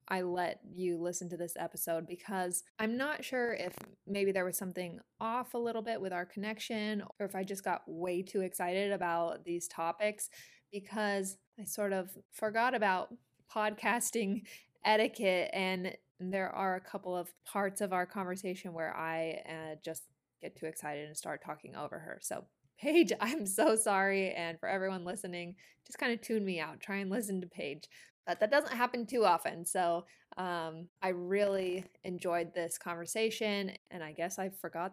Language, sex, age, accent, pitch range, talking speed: English, female, 20-39, American, 180-220 Hz, 175 wpm